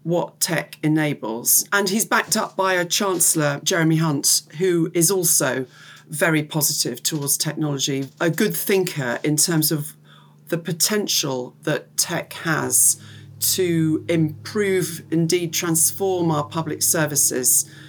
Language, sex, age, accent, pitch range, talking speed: English, female, 40-59, British, 140-170 Hz, 125 wpm